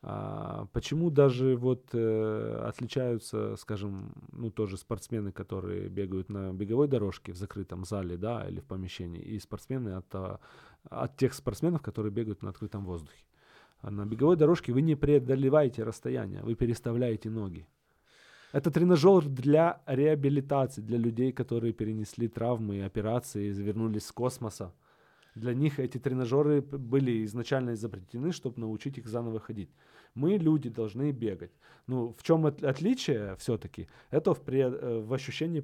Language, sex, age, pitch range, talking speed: Russian, male, 20-39, 100-130 Hz, 135 wpm